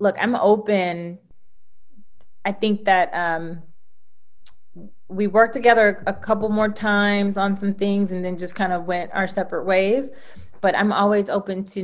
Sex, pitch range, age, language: female, 185-215 Hz, 30-49, English